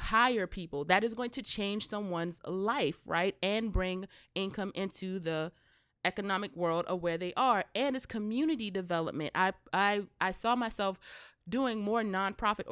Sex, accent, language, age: female, American, English, 20-39